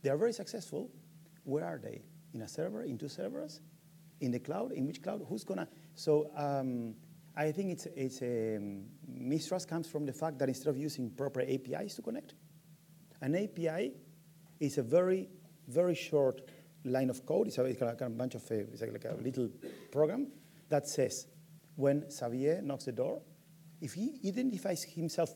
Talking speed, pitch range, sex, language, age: 180 wpm, 135-165 Hz, male, English, 40-59